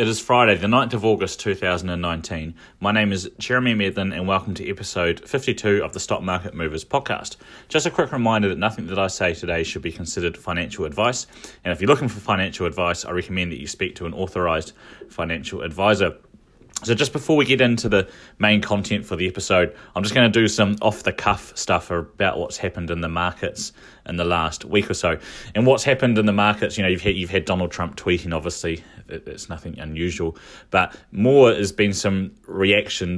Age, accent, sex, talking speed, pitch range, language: 30-49, Australian, male, 205 wpm, 85-105 Hz, English